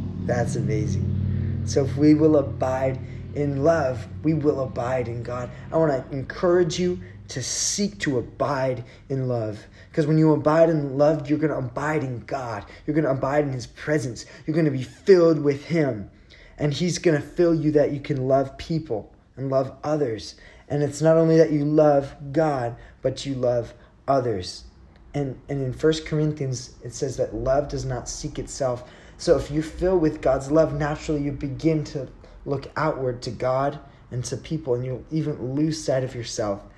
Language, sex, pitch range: English, male, 115-150 Hz